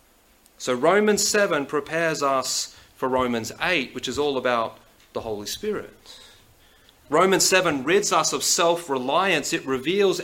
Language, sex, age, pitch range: English, male, 30-49, 135-180 Hz